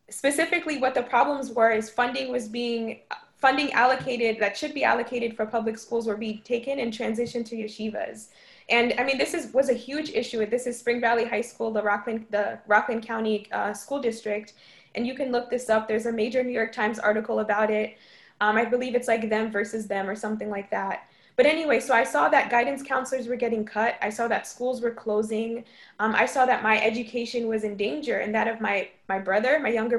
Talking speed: 220 wpm